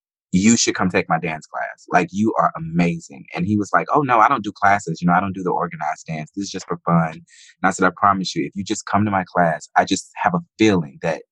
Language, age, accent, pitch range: English, 20-39, American, 90-105 Hz